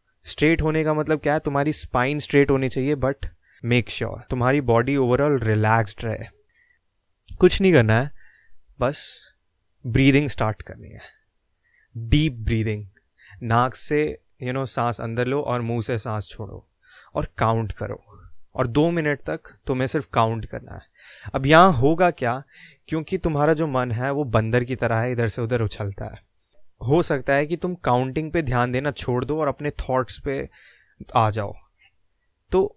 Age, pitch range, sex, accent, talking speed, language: 20-39, 115-145 Hz, male, native, 165 wpm, Hindi